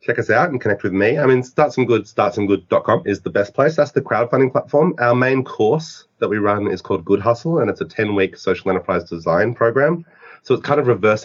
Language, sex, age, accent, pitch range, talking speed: English, male, 30-49, Australian, 95-130 Hz, 225 wpm